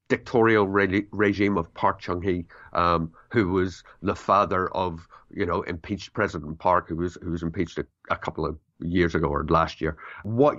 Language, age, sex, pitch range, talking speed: English, 50-69, male, 90-115 Hz, 165 wpm